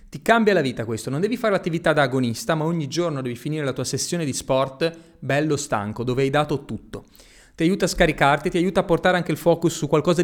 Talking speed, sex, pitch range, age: 235 wpm, male, 140-185 Hz, 30-49